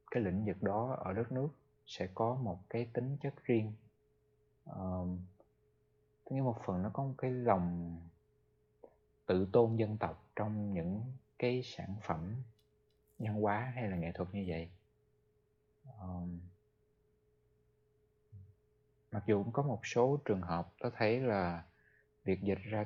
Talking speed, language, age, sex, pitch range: 145 wpm, Vietnamese, 20-39, male, 95-120 Hz